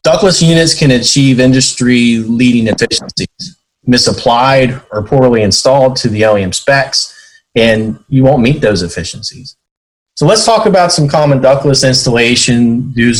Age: 30-49